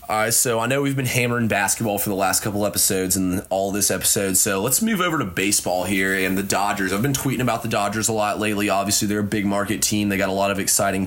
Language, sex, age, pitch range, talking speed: English, male, 20-39, 95-110 Hz, 265 wpm